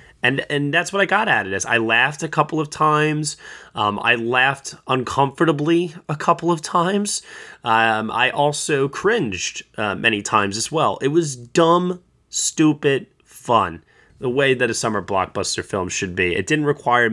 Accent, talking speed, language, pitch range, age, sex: American, 170 wpm, English, 115-160 Hz, 20-39, male